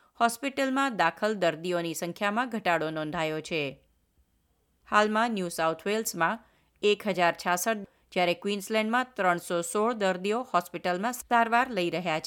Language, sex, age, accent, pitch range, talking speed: Gujarati, female, 30-49, native, 170-230 Hz, 100 wpm